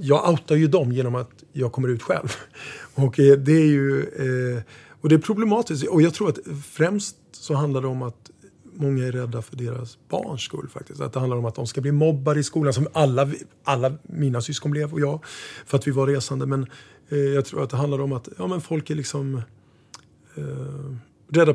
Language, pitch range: Swedish, 125-145 Hz